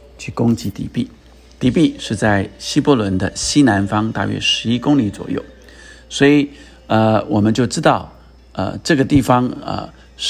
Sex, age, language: male, 50-69, Chinese